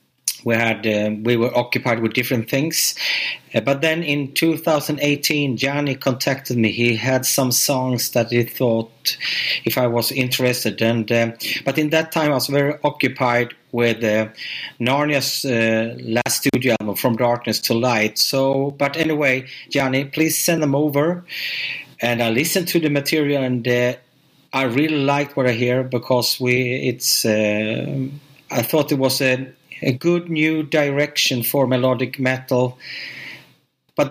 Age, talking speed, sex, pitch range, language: 30-49, 155 wpm, male, 120-150 Hz, German